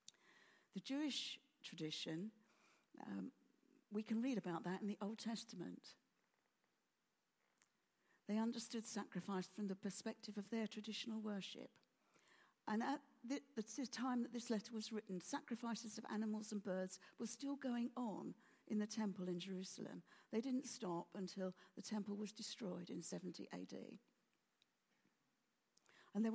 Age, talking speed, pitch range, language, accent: 50-69, 135 wpm, 190-235 Hz, English, British